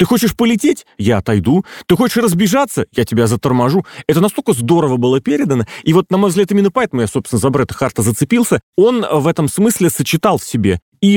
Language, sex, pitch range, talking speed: Russian, male, 120-170 Hz, 200 wpm